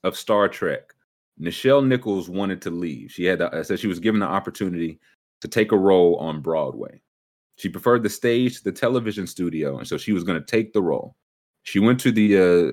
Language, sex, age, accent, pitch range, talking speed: English, male, 30-49, American, 90-115 Hz, 205 wpm